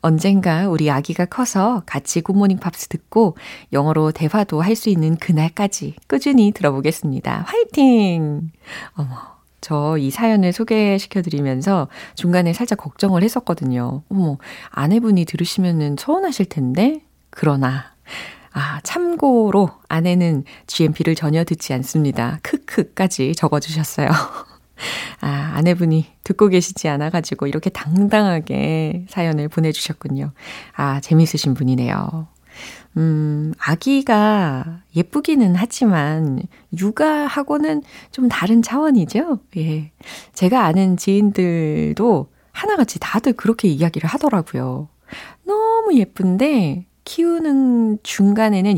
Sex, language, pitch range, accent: female, Korean, 155-215 Hz, native